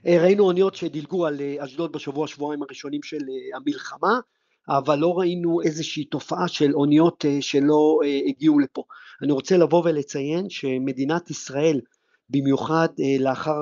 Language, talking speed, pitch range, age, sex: Hebrew, 125 wpm, 135-165 Hz, 50-69, male